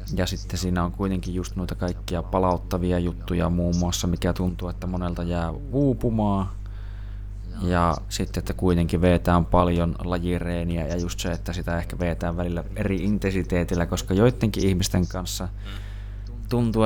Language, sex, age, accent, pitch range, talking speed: Finnish, male, 20-39, native, 90-100 Hz, 140 wpm